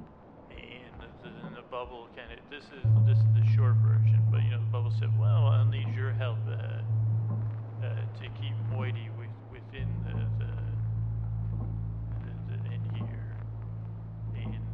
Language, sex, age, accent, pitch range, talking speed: English, male, 40-59, American, 110-120 Hz, 160 wpm